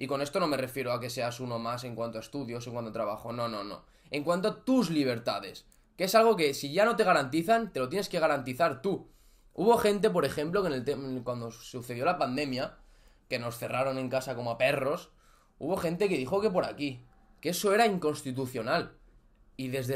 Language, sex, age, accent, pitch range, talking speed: Spanish, male, 20-39, Spanish, 130-200 Hz, 225 wpm